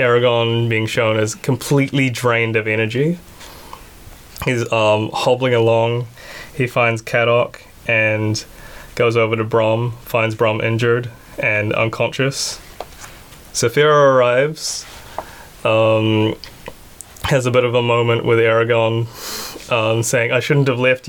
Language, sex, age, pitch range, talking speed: English, male, 10-29, 110-125 Hz, 115 wpm